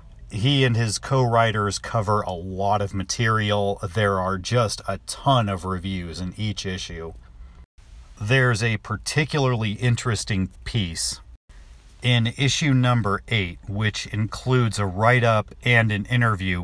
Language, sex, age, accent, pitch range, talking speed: English, male, 40-59, American, 95-120 Hz, 125 wpm